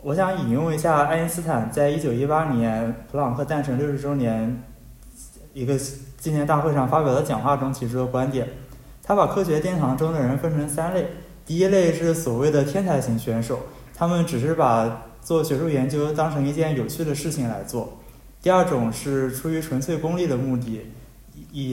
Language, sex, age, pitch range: Chinese, male, 20-39, 125-155 Hz